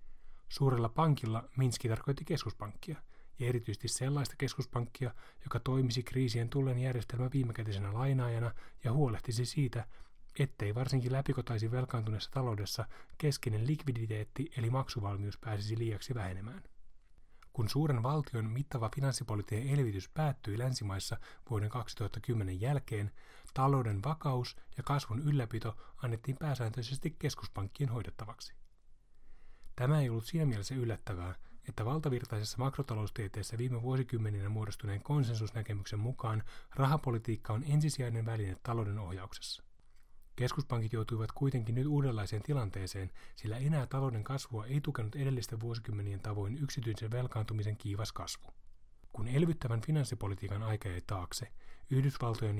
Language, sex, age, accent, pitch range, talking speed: Finnish, male, 30-49, native, 110-135 Hz, 110 wpm